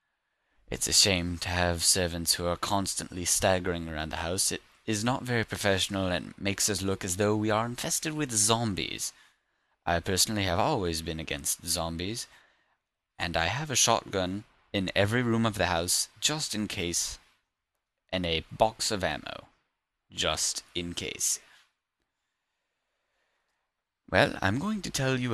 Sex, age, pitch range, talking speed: male, 20-39, 85-105 Hz, 150 wpm